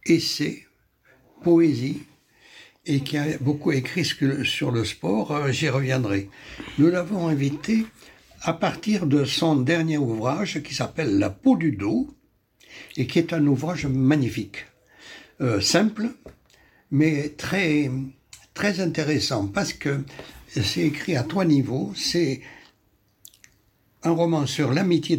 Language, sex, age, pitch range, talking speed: French, male, 60-79, 115-160 Hz, 125 wpm